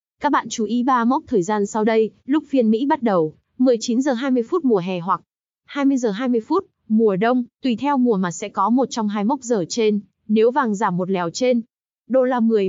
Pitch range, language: 205-255 Hz, Vietnamese